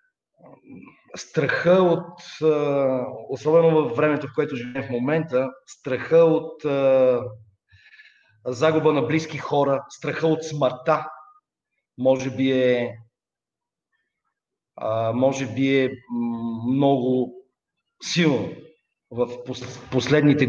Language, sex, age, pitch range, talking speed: Bulgarian, male, 40-59, 130-155 Hz, 80 wpm